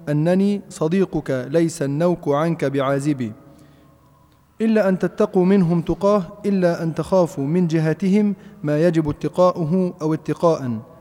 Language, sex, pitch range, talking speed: Arabic, male, 150-180 Hz, 115 wpm